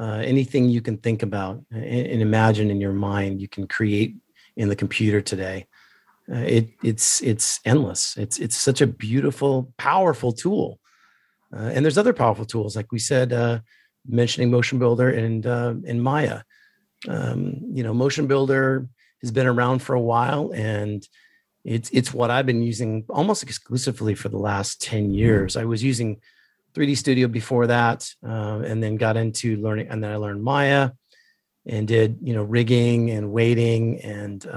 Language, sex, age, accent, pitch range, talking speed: English, male, 40-59, American, 110-125 Hz, 170 wpm